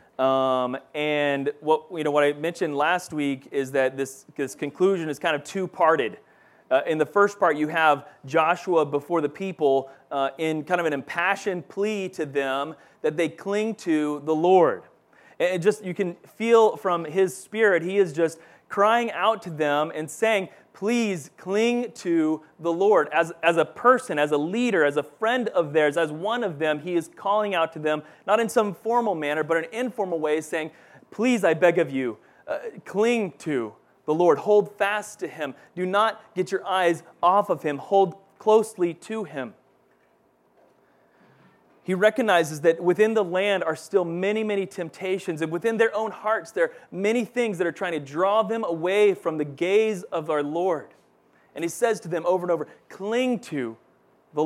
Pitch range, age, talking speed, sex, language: 155-205 Hz, 30-49, 185 wpm, male, English